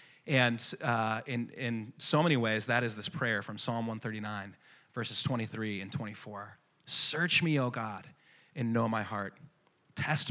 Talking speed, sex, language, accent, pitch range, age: 155 wpm, male, English, American, 110-150 Hz, 30-49